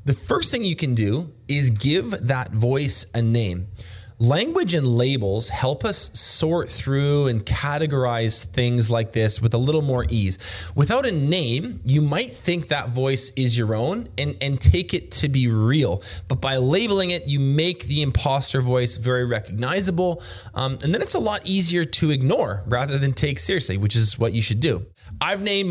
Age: 20-39